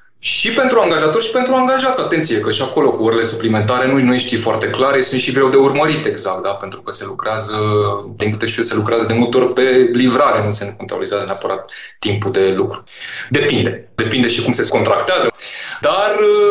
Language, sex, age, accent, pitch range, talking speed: Romanian, male, 20-39, native, 110-160 Hz, 195 wpm